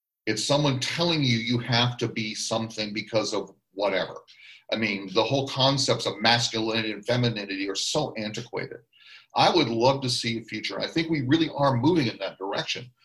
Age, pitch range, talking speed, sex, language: 40-59, 110-125 Hz, 185 wpm, male, English